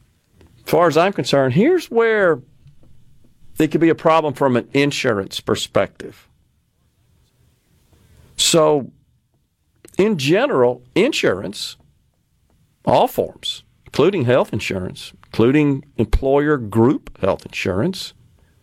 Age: 50-69